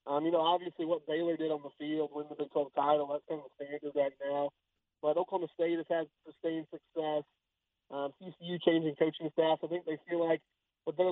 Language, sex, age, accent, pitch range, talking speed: English, male, 20-39, American, 145-165 Hz, 220 wpm